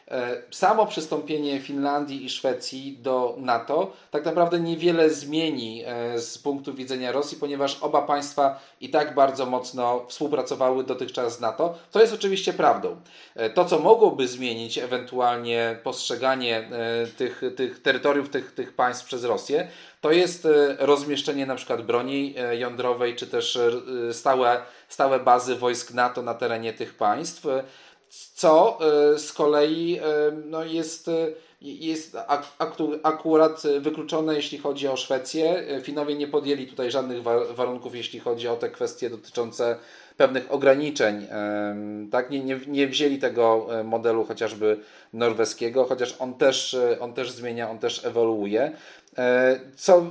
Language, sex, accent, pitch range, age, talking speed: Polish, male, native, 120-150 Hz, 40-59, 125 wpm